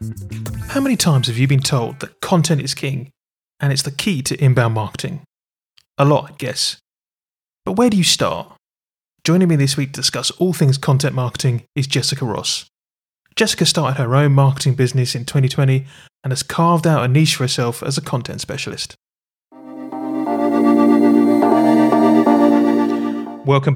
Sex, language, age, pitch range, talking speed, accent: male, English, 30-49, 125-150 Hz, 155 wpm, British